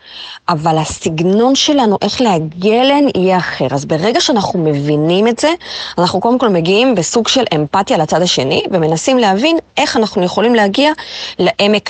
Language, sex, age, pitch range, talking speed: Hebrew, female, 30-49, 160-245 Hz, 150 wpm